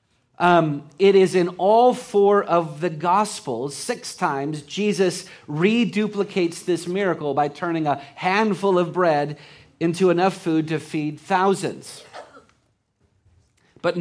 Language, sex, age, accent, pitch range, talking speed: English, male, 40-59, American, 135-190 Hz, 120 wpm